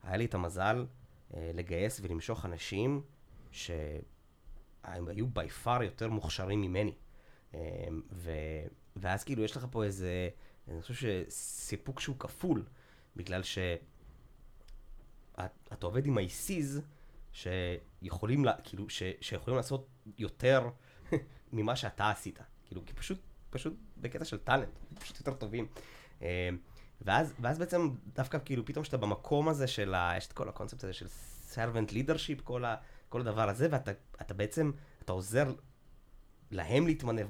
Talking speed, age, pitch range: 125 wpm, 20-39, 95-130 Hz